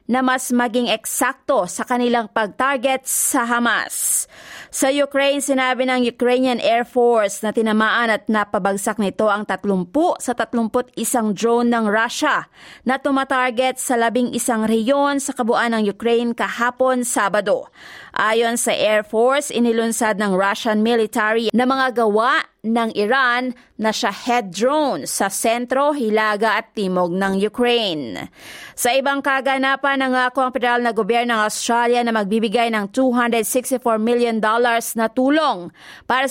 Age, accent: 30-49, native